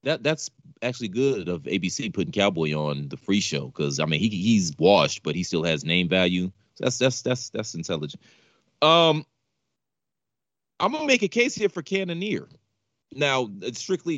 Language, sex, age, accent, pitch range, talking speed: English, male, 30-49, American, 100-155 Hz, 180 wpm